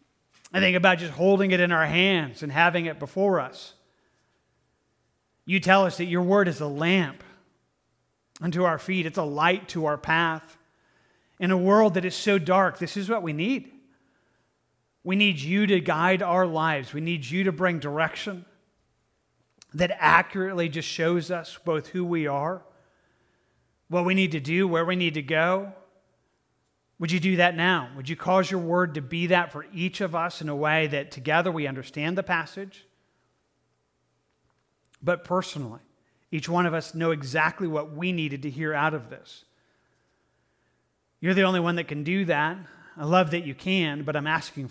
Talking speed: 180 wpm